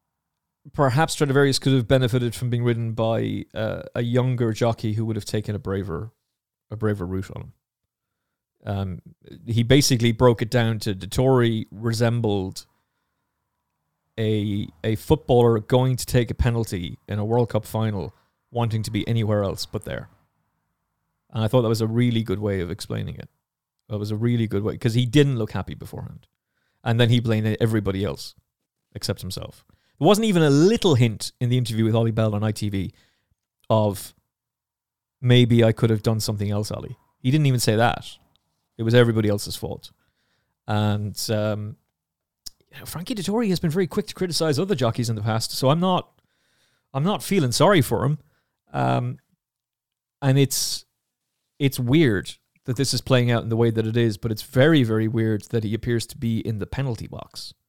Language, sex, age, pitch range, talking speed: English, male, 30-49, 110-130 Hz, 180 wpm